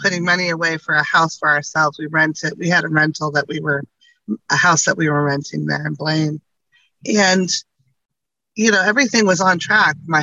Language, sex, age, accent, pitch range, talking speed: English, female, 30-49, American, 155-180 Hz, 200 wpm